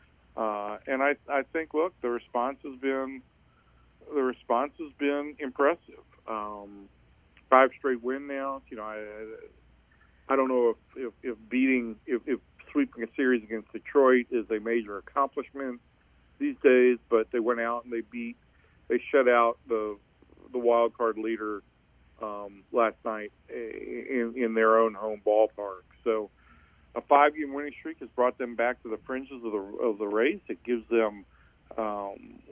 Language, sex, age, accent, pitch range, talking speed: English, male, 50-69, American, 105-125 Hz, 160 wpm